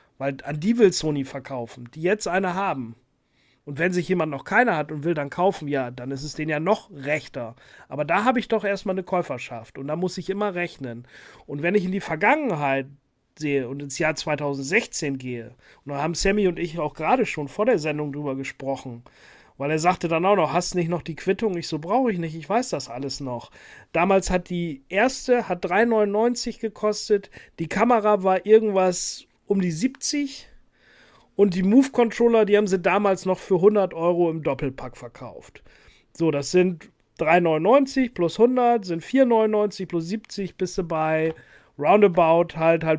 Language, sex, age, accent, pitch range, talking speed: German, male, 40-59, German, 140-200 Hz, 190 wpm